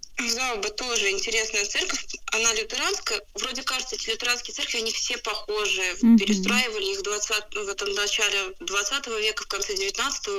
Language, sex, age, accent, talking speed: Russian, female, 20-39, native, 145 wpm